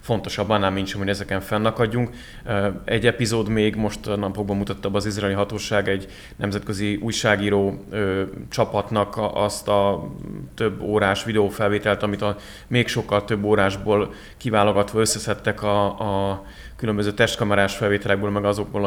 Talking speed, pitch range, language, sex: 130 wpm, 100-110 Hz, Hungarian, male